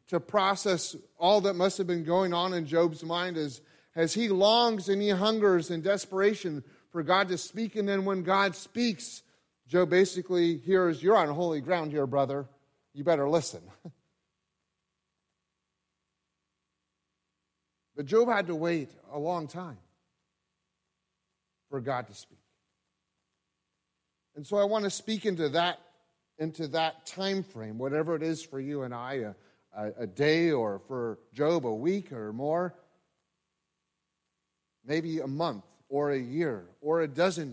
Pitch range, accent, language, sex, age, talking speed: 145-185 Hz, American, English, male, 40-59, 145 wpm